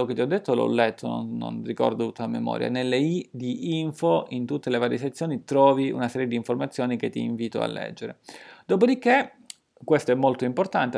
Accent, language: native, Italian